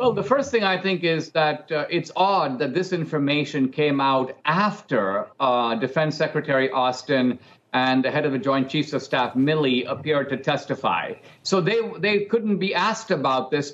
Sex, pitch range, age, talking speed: male, 155-200 Hz, 50-69, 185 wpm